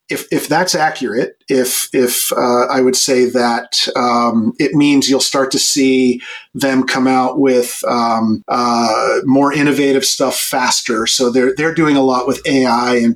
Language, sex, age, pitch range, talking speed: English, male, 40-59, 125-140 Hz, 165 wpm